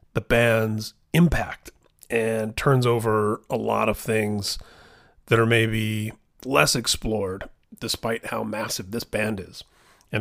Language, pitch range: English, 110-140 Hz